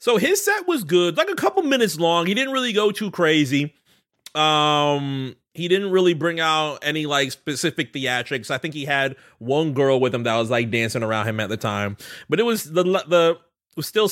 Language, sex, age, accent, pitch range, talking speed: English, male, 30-49, American, 120-175 Hz, 215 wpm